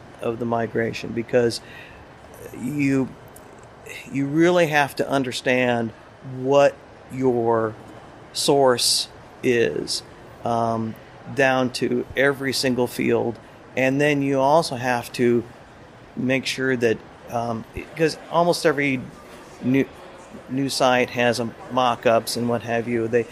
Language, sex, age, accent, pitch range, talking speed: English, male, 40-59, American, 115-135 Hz, 115 wpm